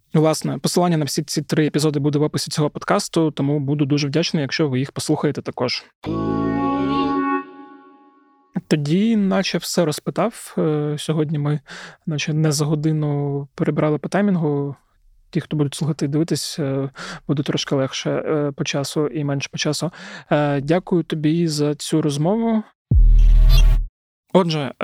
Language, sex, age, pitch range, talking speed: Ukrainian, male, 20-39, 140-160 Hz, 135 wpm